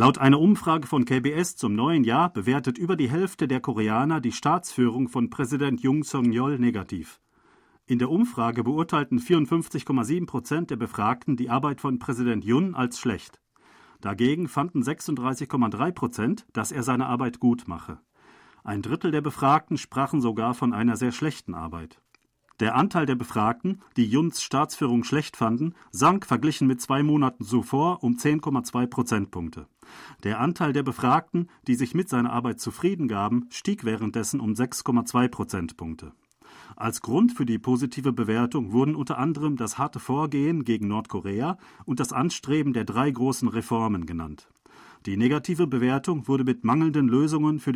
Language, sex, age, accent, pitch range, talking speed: German, male, 40-59, German, 120-145 Hz, 155 wpm